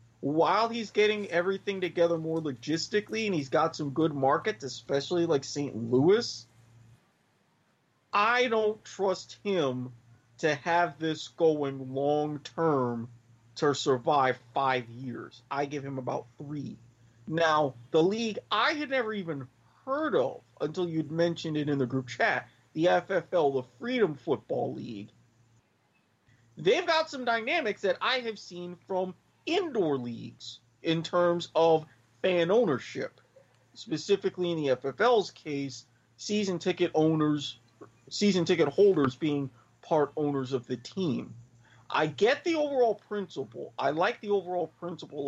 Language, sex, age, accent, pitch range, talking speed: English, male, 30-49, American, 125-180 Hz, 135 wpm